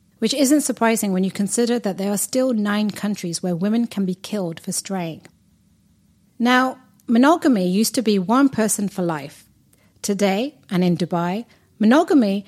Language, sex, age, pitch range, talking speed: English, female, 40-59, 190-260 Hz, 160 wpm